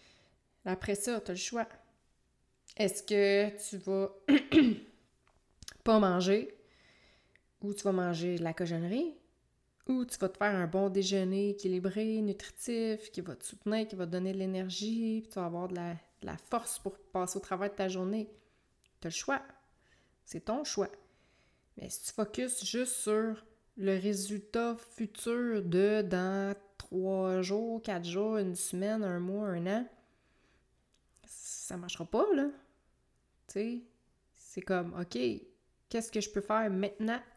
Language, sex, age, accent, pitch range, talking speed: French, female, 20-39, Canadian, 190-225 Hz, 155 wpm